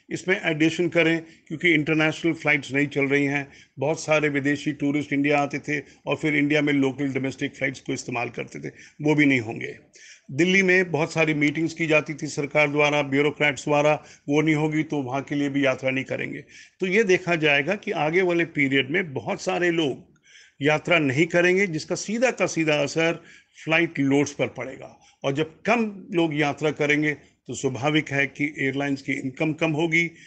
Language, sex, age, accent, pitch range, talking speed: Hindi, male, 50-69, native, 145-170 Hz, 185 wpm